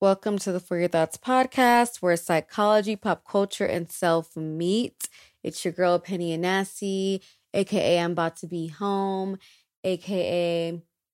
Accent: American